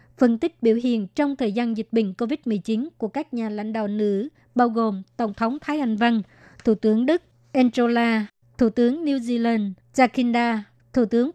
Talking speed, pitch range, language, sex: 180 wpm, 220-245 Hz, Vietnamese, male